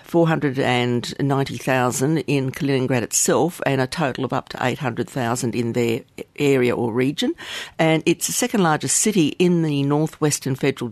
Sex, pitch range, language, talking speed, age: female, 130-170 Hz, English, 145 wpm, 50-69